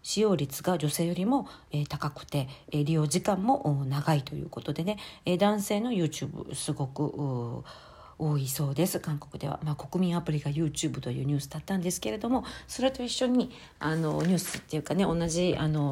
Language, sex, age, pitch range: Japanese, female, 40-59, 150-205 Hz